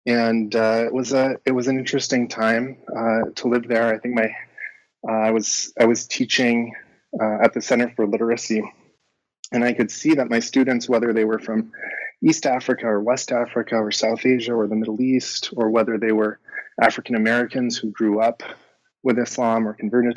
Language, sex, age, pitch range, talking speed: English, male, 20-39, 110-125 Hz, 190 wpm